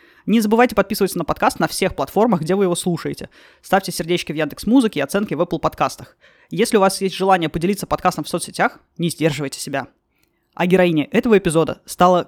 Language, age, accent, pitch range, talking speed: Russian, 20-39, native, 165-205 Hz, 185 wpm